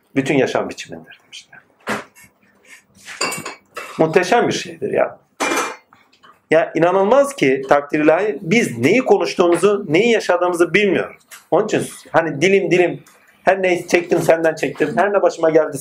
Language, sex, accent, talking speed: Turkish, male, native, 125 wpm